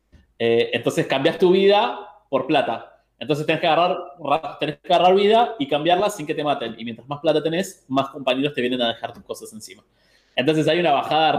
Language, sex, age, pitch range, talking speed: Spanish, male, 20-39, 120-155 Hz, 205 wpm